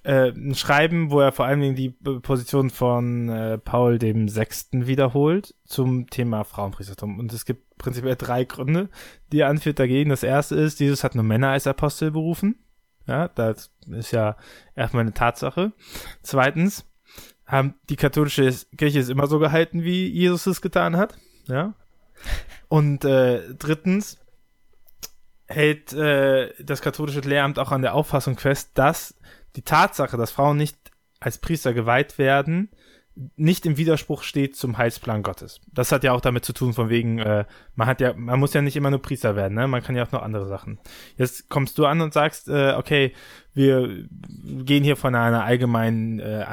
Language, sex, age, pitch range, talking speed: German, male, 20-39, 120-145 Hz, 175 wpm